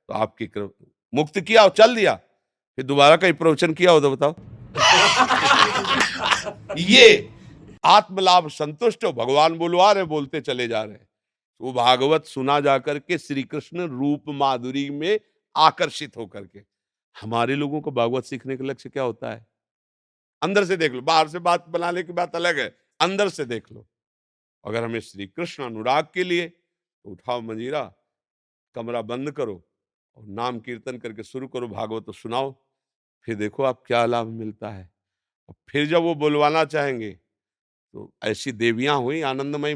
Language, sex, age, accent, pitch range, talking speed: Hindi, male, 50-69, native, 110-150 Hz, 160 wpm